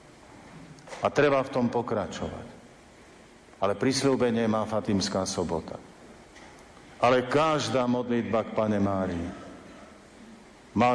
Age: 50-69